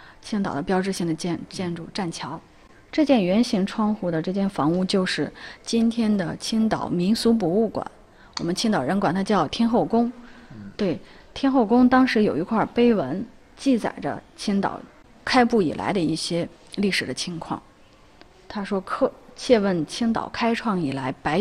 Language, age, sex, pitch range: Chinese, 30-49, female, 170-225 Hz